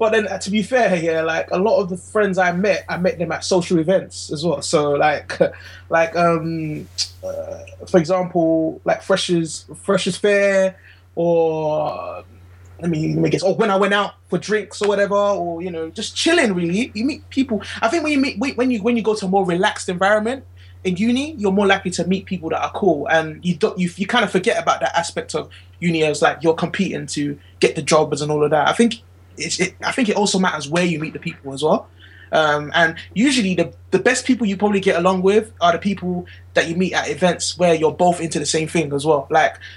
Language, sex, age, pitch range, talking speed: English, male, 20-39, 160-205 Hz, 230 wpm